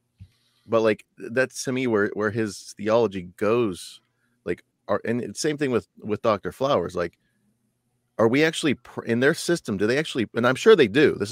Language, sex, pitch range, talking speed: English, male, 95-120 Hz, 180 wpm